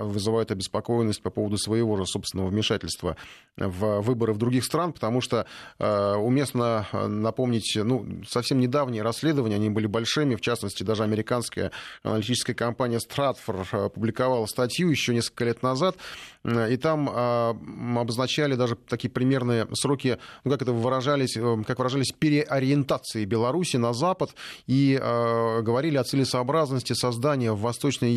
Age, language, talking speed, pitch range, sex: 30-49, Russian, 145 wpm, 110-130 Hz, male